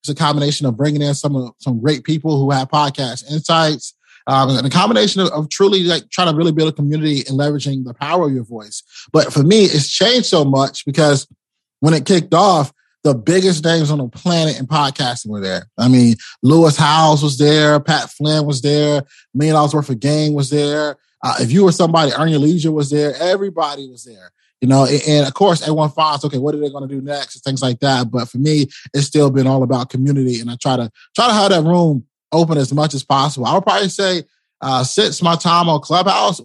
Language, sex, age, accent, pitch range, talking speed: English, male, 20-39, American, 135-160 Hz, 225 wpm